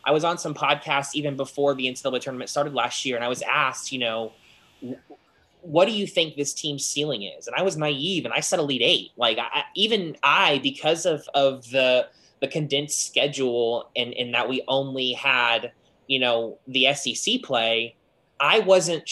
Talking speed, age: 190 wpm, 20-39